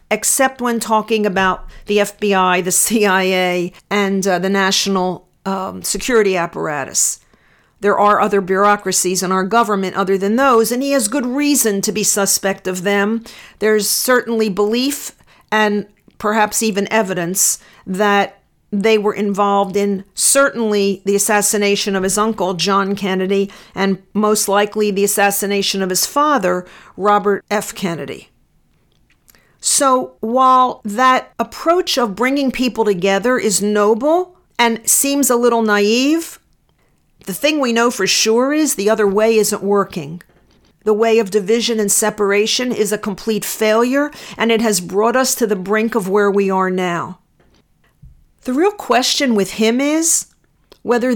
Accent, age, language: American, 50-69, English